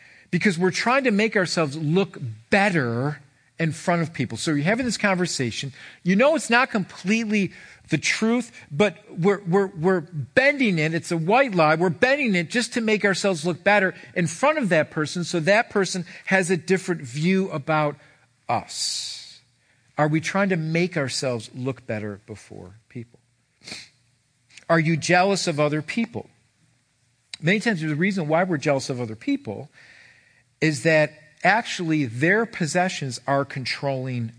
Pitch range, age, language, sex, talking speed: 125-180 Hz, 50-69, English, male, 155 wpm